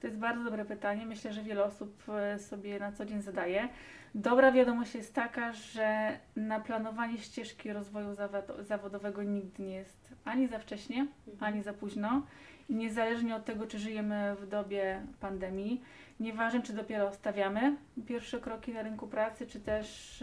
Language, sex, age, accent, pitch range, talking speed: Polish, female, 30-49, native, 210-240 Hz, 155 wpm